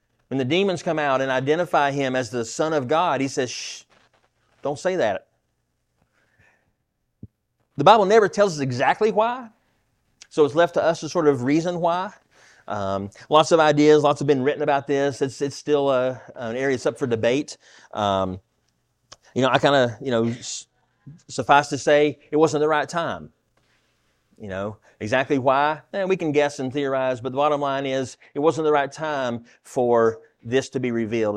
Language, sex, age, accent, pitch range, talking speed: English, male, 30-49, American, 115-150 Hz, 185 wpm